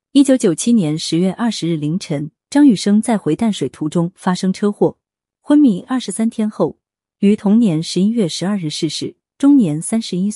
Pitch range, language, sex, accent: 165-225 Hz, Chinese, female, native